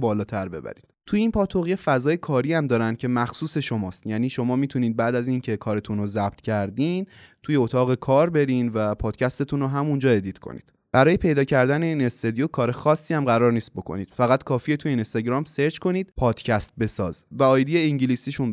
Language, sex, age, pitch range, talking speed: Persian, male, 20-39, 105-140 Hz, 170 wpm